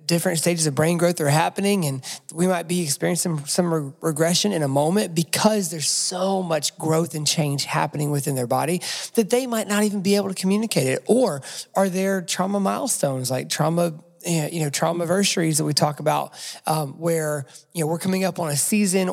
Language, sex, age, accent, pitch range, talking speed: English, male, 30-49, American, 150-180 Hz, 195 wpm